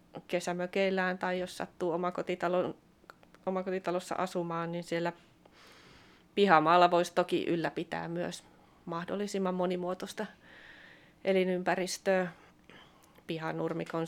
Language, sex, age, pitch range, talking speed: Finnish, female, 30-49, 165-195 Hz, 70 wpm